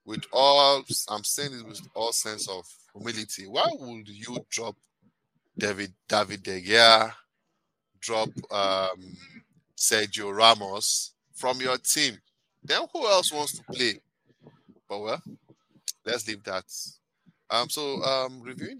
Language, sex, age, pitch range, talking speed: English, male, 20-39, 95-120 Hz, 130 wpm